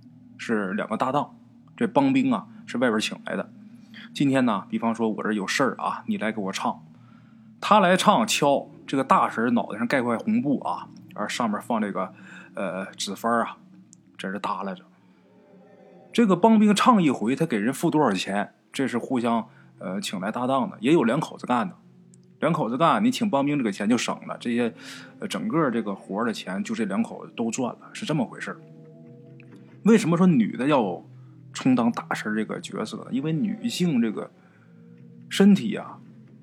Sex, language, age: male, Chinese, 20-39